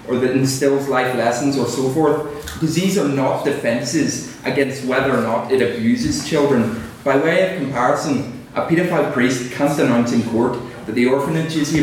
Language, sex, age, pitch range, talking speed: English, male, 20-39, 120-140 Hz, 180 wpm